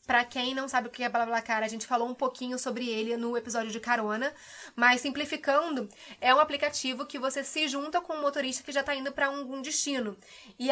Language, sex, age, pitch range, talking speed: Portuguese, female, 20-39, 245-295 Hz, 235 wpm